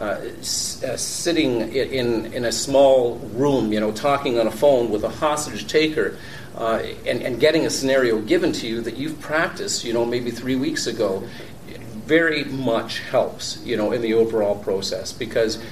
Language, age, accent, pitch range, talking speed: English, 50-69, American, 110-135 Hz, 185 wpm